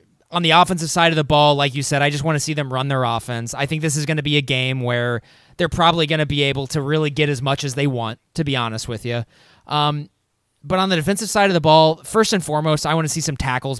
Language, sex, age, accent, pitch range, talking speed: English, male, 20-39, American, 130-160 Hz, 285 wpm